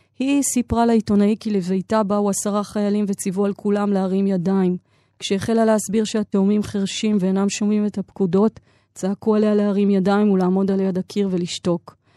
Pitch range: 185-210 Hz